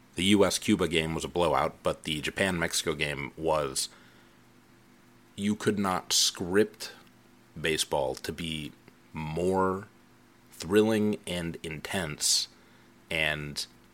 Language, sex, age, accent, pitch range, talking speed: English, male, 30-49, American, 80-100 Hz, 100 wpm